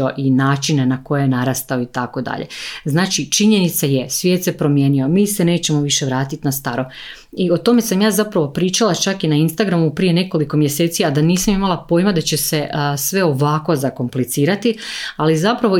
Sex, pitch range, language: female, 145-180 Hz, Croatian